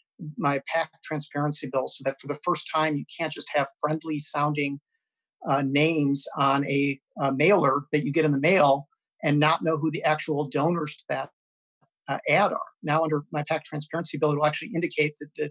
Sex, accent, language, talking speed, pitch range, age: male, American, English, 200 wpm, 145-175 Hz, 40-59